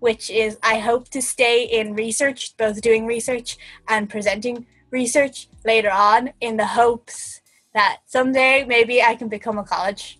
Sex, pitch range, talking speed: female, 210-265 Hz, 160 wpm